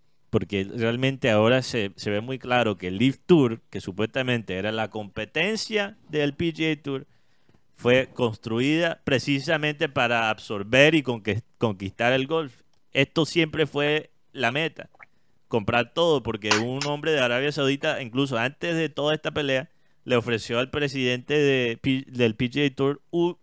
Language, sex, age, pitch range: Spanish, male, 30-49, 110-145 Hz